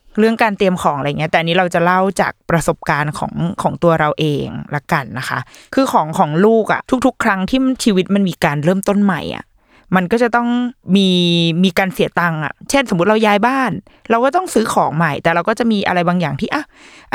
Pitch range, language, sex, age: 165-220 Hz, Thai, female, 20-39